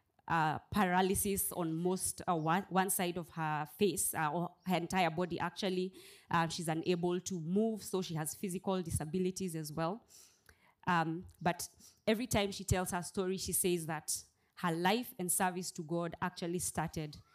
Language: English